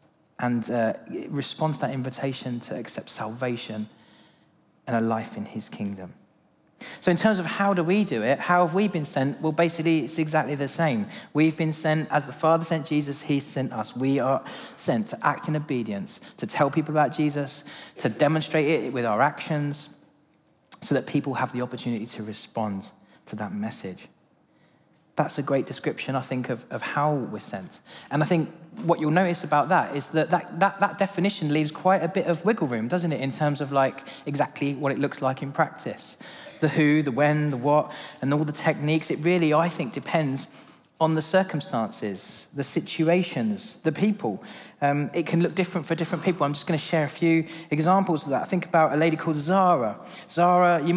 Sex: male